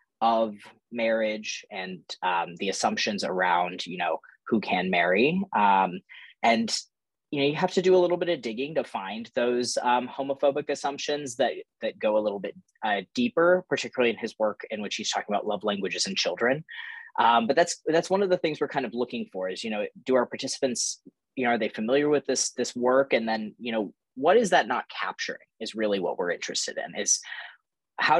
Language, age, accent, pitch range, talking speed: English, 20-39, American, 115-165 Hz, 205 wpm